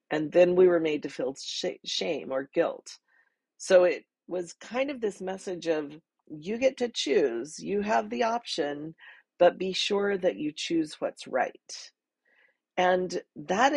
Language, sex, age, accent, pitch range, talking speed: English, female, 40-59, American, 175-240 Hz, 155 wpm